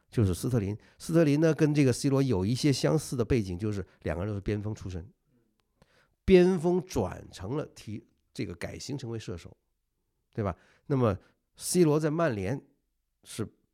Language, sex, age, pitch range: Chinese, male, 50-69, 95-130 Hz